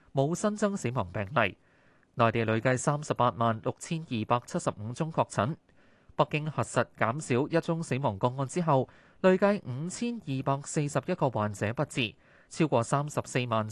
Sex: male